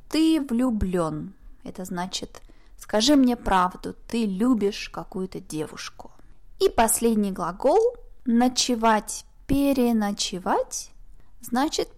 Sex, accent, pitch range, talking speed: female, native, 210-275 Hz, 85 wpm